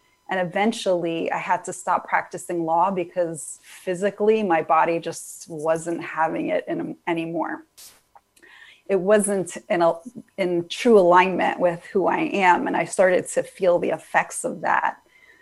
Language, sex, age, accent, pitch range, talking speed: English, female, 30-49, American, 170-205 Hz, 150 wpm